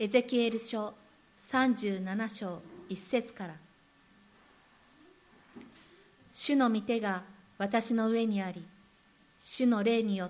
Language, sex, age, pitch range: Japanese, female, 50-69, 195-225 Hz